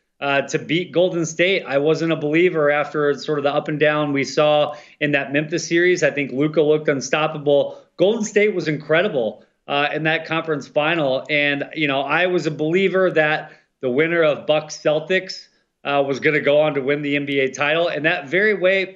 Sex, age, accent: male, 30-49, American